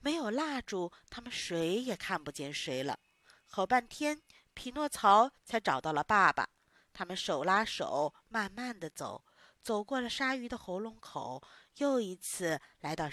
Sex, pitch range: female, 155-215 Hz